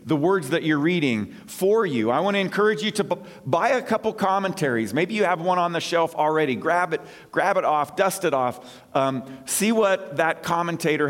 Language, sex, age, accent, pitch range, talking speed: English, male, 40-59, American, 135-180 Hz, 210 wpm